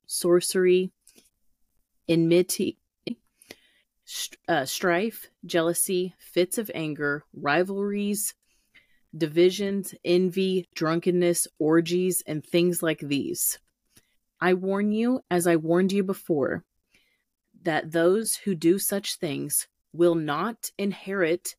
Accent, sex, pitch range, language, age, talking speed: American, female, 155-190 Hz, English, 30-49, 90 wpm